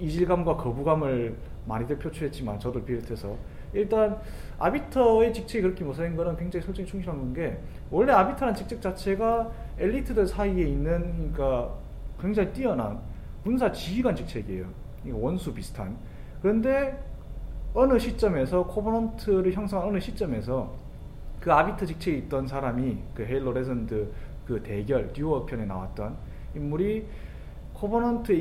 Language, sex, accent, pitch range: Korean, male, native, 140-210 Hz